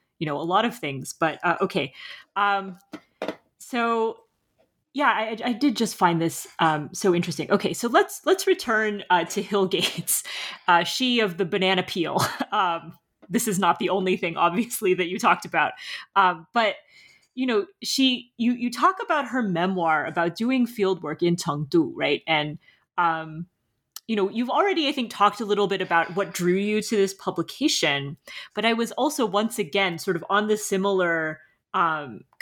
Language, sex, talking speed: English, female, 180 wpm